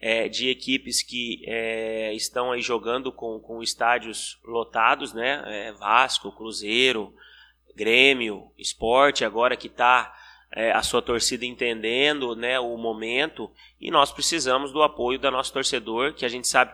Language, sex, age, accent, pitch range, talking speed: Portuguese, male, 20-39, Brazilian, 120-140 Hz, 135 wpm